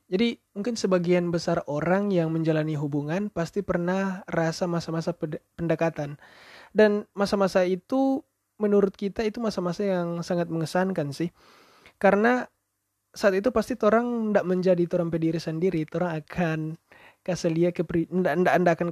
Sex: male